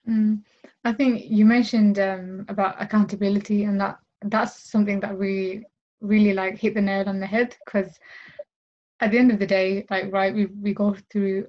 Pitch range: 195-215 Hz